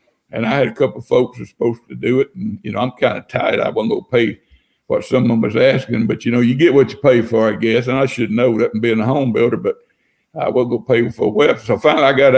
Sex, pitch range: male, 115-160 Hz